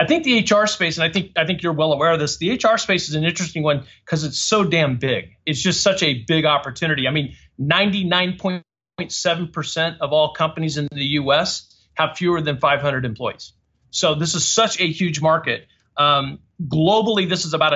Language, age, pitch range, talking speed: English, 40-59, 150-185 Hz, 200 wpm